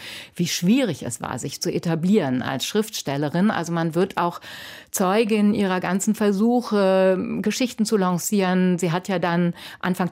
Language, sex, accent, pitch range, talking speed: German, female, German, 165-215 Hz, 150 wpm